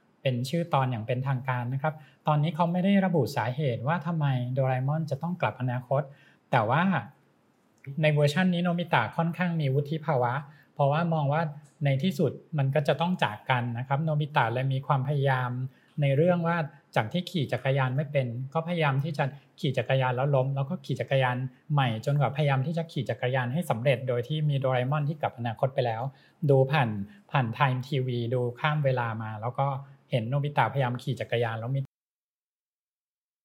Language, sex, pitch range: English, male, 125-155 Hz